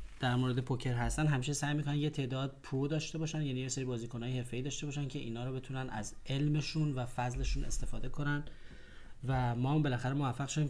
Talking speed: 190 wpm